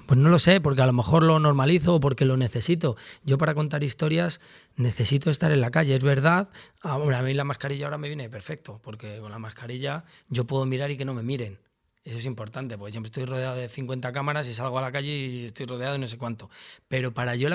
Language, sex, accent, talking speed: Spanish, male, Spanish, 245 wpm